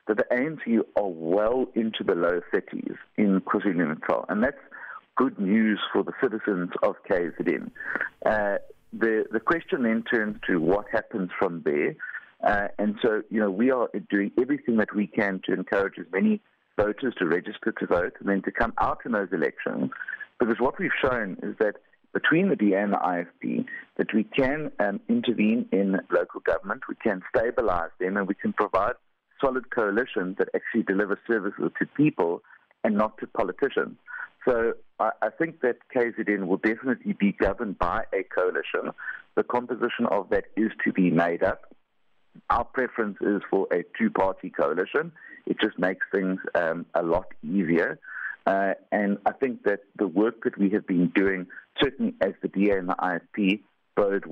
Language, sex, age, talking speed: English, male, 50-69, 175 wpm